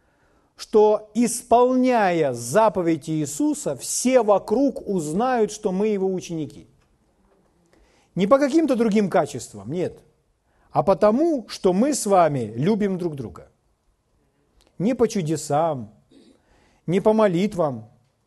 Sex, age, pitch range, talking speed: male, 40-59, 145-220 Hz, 105 wpm